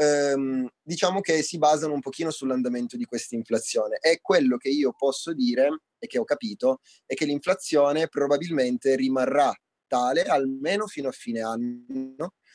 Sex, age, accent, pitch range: male, 30-49, native, 125-180 Hz